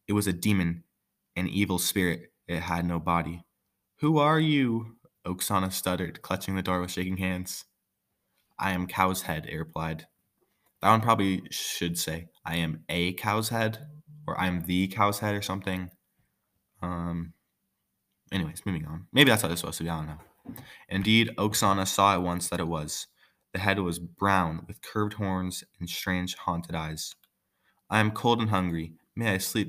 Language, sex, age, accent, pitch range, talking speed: English, male, 20-39, American, 85-105 Hz, 175 wpm